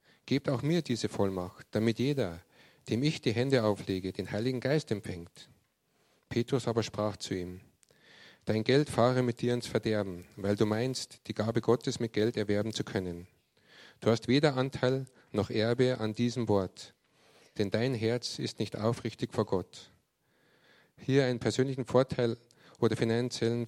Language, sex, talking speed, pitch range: German, male, 155 wpm, 105-125 Hz